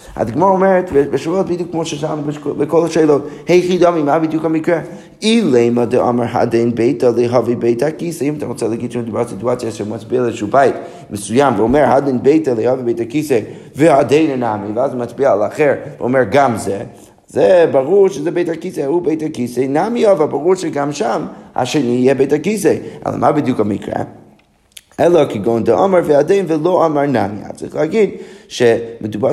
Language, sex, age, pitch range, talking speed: Hebrew, male, 30-49, 120-180 Hz, 160 wpm